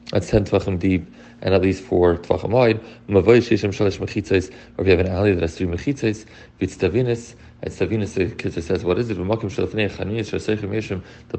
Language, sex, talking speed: English, male, 130 wpm